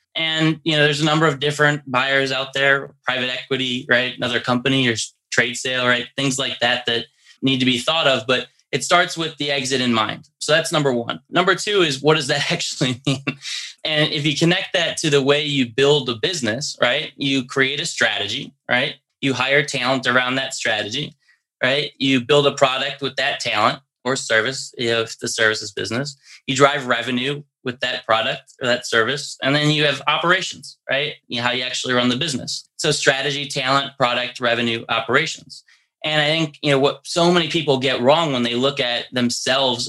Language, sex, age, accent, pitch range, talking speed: English, male, 20-39, American, 125-150 Hz, 205 wpm